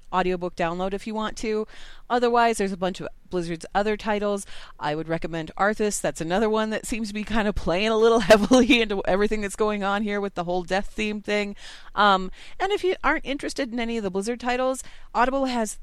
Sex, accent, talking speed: female, American, 215 wpm